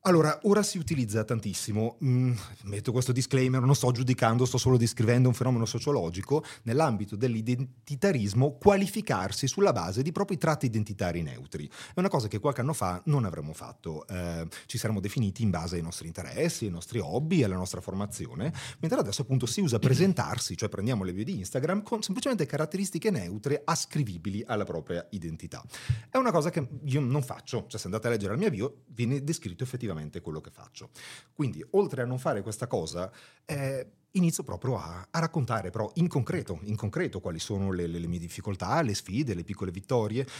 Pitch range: 105-155 Hz